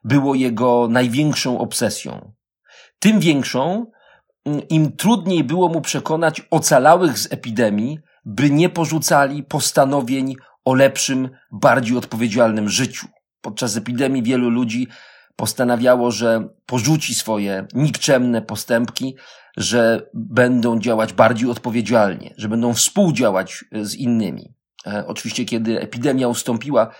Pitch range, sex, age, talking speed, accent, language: 115-150 Hz, male, 40-59, 105 wpm, native, Polish